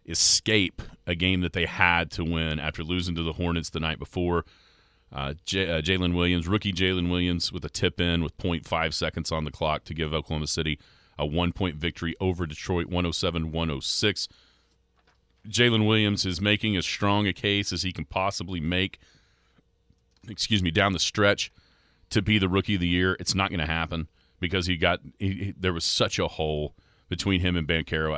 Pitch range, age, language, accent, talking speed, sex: 80-95 Hz, 40-59, English, American, 180 wpm, male